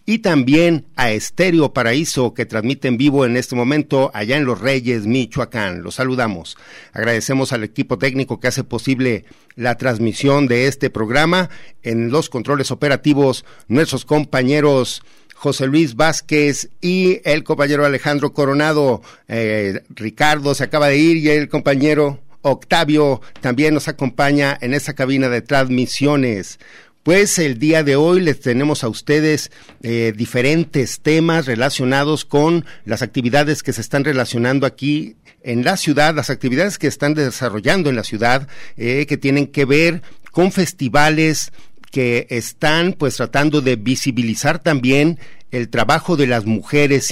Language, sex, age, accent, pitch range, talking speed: Spanish, male, 50-69, Mexican, 125-150 Hz, 145 wpm